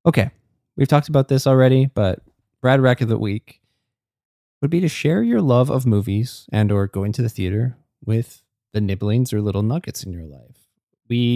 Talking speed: 190 wpm